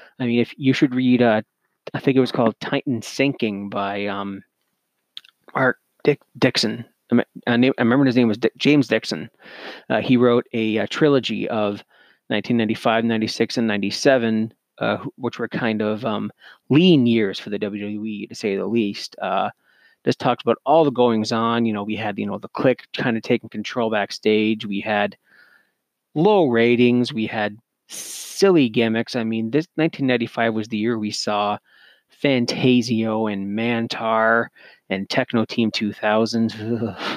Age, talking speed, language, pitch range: 30-49, 160 wpm, English, 110-130 Hz